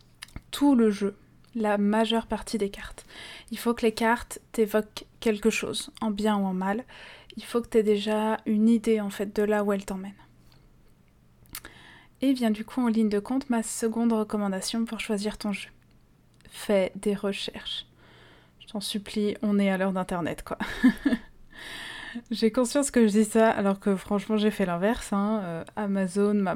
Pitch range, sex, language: 200-225 Hz, female, French